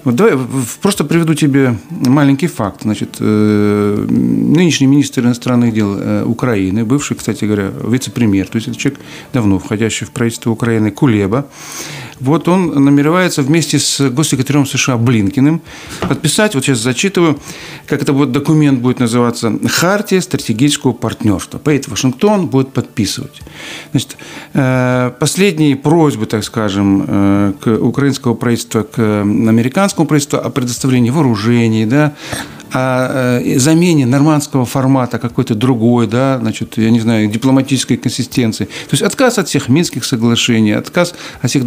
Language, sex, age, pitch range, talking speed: Russian, male, 50-69, 115-145 Hz, 130 wpm